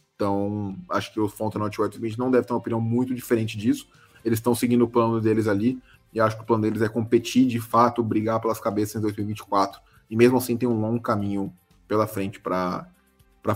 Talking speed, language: 205 wpm, Portuguese